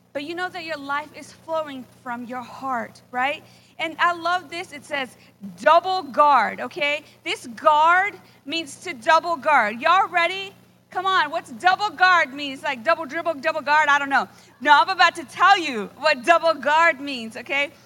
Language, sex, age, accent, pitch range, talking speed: English, female, 40-59, American, 280-350 Hz, 180 wpm